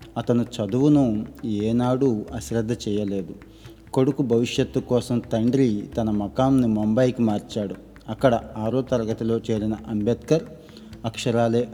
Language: Telugu